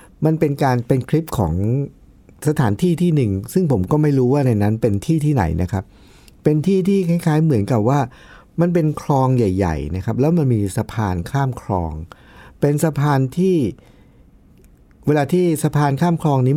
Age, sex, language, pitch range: 60-79, male, Thai, 100-150 Hz